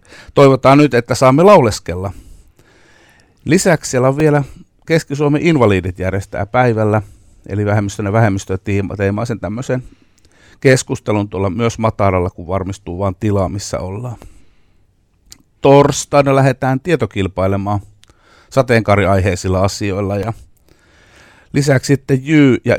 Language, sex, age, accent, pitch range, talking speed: Finnish, male, 50-69, native, 95-120 Hz, 105 wpm